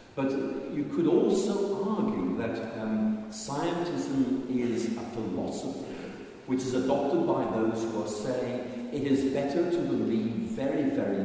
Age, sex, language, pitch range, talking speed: 50-69, male, Danish, 110-130 Hz, 140 wpm